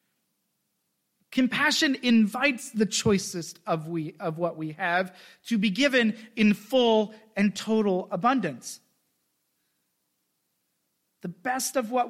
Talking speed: 110 wpm